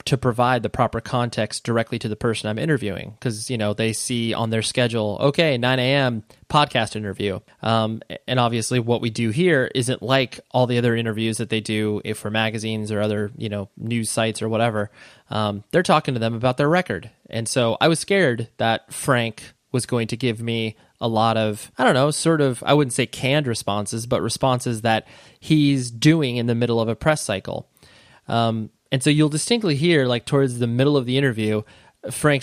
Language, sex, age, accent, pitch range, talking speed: English, male, 20-39, American, 110-135 Hz, 205 wpm